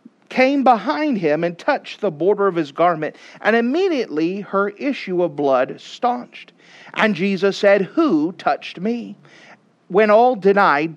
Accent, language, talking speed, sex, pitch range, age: American, English, 140 wpm, male, 165-250 Hz, 40-59